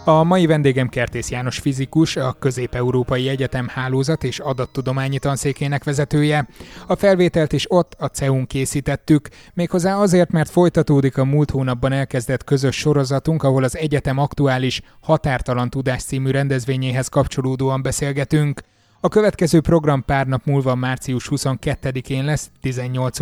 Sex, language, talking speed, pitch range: male, Hungarian, 130 wpm, 130-150 Hz